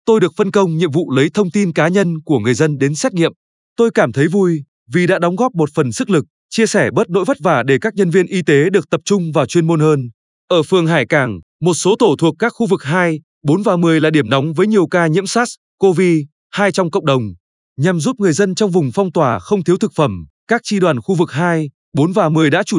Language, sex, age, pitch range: Vietnamese, male, 20-39, 150-200 Hz